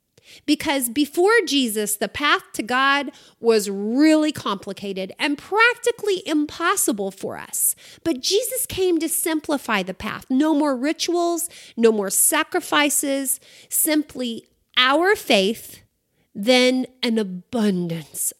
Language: English